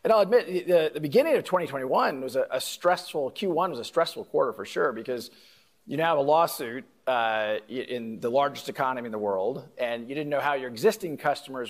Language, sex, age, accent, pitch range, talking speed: English, male, 40-59, American, 130-170 Hz, 210 wpm